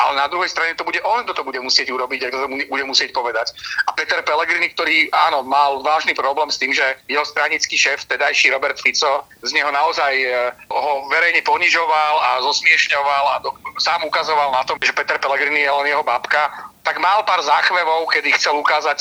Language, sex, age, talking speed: Slovak, male, 40-59, 200 wpm